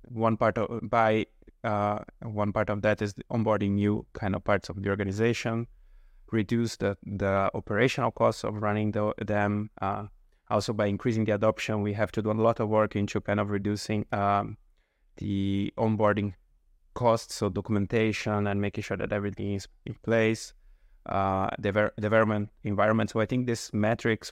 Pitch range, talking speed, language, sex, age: 100-110 Hz, 170 wpm, English, male, 20-39